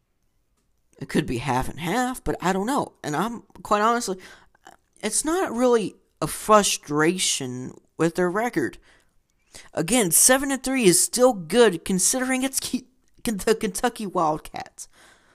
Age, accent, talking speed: 40-59, American, 135 wpm